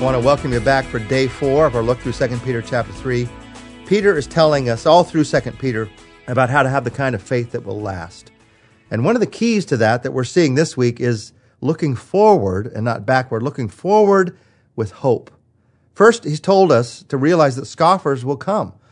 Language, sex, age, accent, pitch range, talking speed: English, male, 40-59, American, 110-155 Hz, 215 wpm